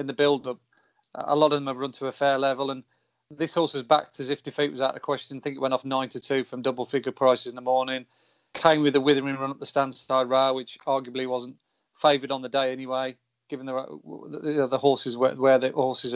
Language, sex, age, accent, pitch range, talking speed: English, male, 30-49, British, 130-145 Hz, 240 wpm